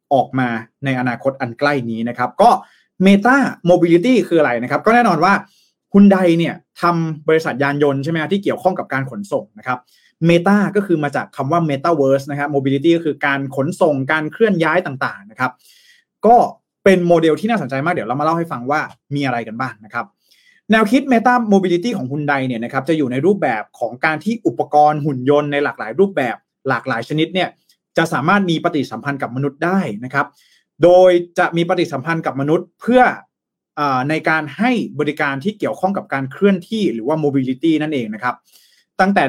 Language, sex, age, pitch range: Thai, male, 20-39, 140-180 Hz